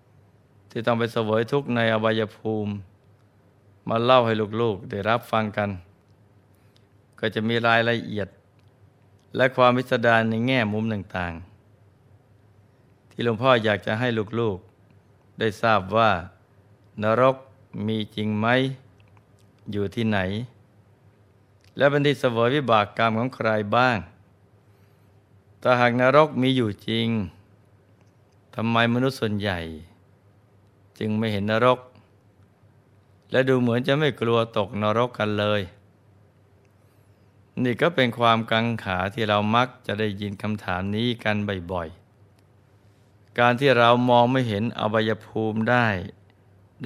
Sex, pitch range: male, 100-120 Hz